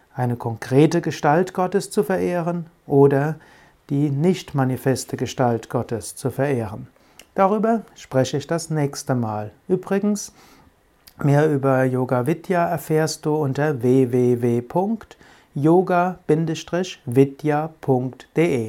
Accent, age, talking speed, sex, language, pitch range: German, 60-79, 95 wpm, male, German, 130-160 Hz